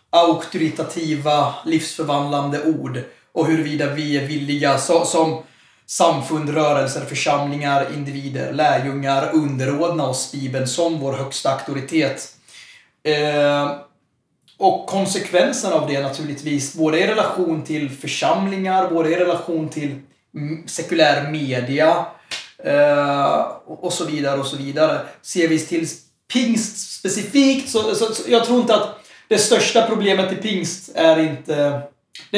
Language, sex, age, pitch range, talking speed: English, male, 30-49, 145-175 Hz, 120 wpm